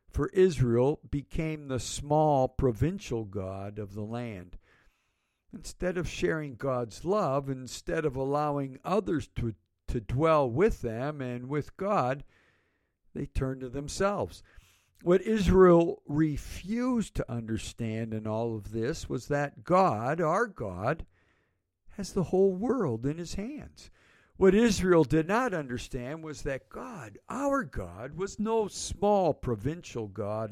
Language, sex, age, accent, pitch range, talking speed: English, male, 60-79, American, 110-160 Hz, 130 wpm